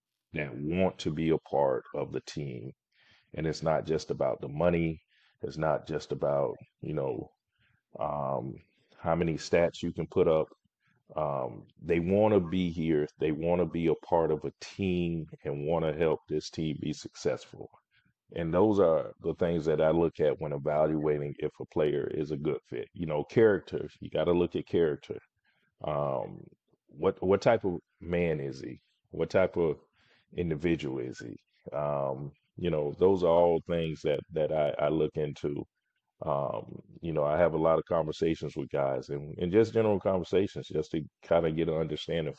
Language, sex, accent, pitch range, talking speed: English, male, American, 75-85 Hz, 185 wpm